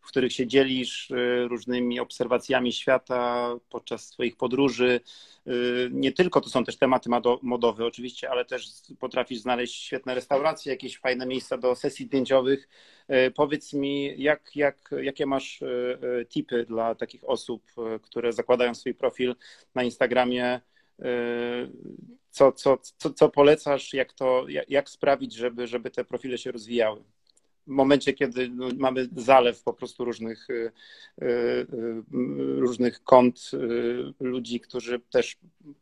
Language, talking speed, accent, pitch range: Polish, 120 wpm, native, 120-135 Hz